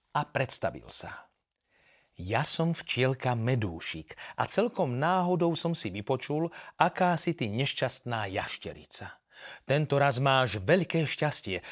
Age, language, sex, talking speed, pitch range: 40-59, Slovak, male, 120 wpm, 115-165 Hz